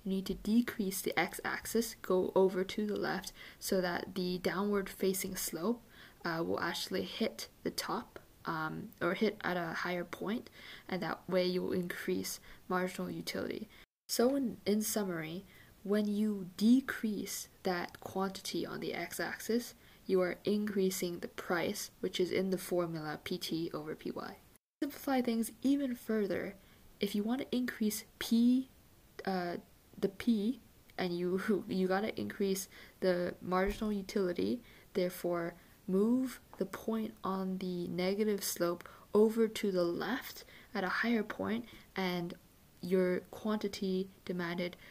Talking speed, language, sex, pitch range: 140 wpm, English, female, 185-210 Hz